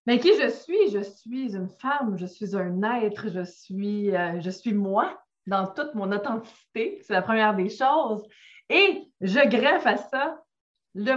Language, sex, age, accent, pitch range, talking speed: French, female, 20-39, Canadian, 195-235 Hz, 175 wpm